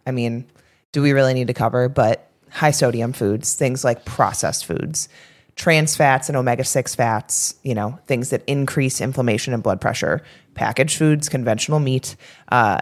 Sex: female